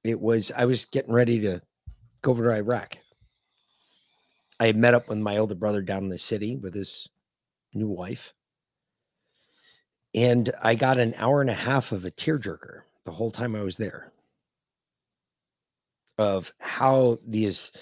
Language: English